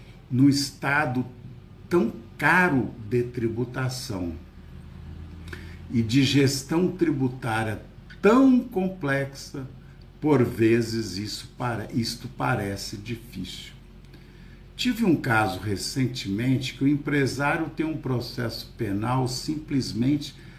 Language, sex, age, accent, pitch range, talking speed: Portuguese, male, 60-79, Brazilian, 115-140 Hz, 85 wpm